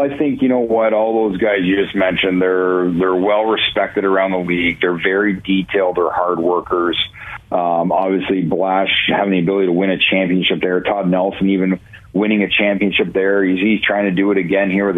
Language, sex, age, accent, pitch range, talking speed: English, male, 40-59, American, 90-100 Hz, 200 wpm